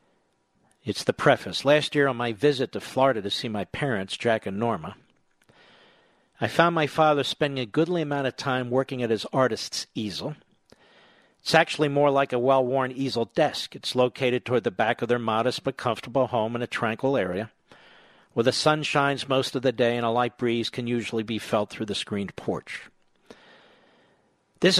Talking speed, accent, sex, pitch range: 185 wpm, American, male, 120-145 Hz